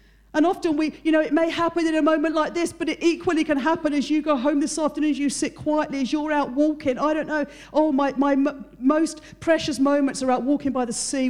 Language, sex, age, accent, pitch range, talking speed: English, female, 50-69, British, 185-280 Hz, 255 wpm